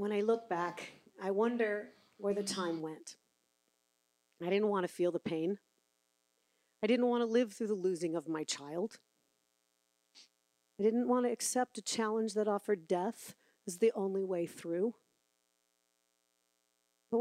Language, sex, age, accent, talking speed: English, female, 50-69, American, 155 wpm